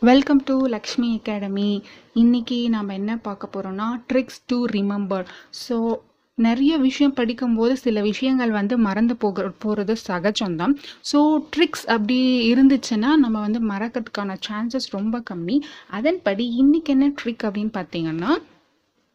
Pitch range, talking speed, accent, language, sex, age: 210-265 Hz, 120 wpm, native, Tamil, female, 30-49